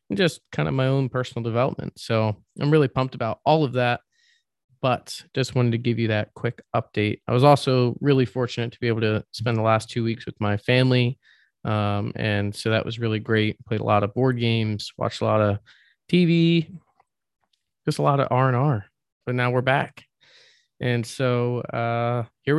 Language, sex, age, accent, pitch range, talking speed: English, male, 20-39, American, 115-135 Hz, 190 wpm